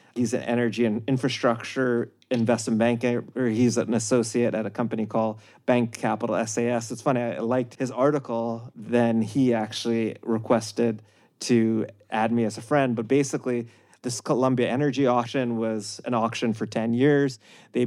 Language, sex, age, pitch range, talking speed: English, male, 30-49, 115-125 Hz, 155 wpm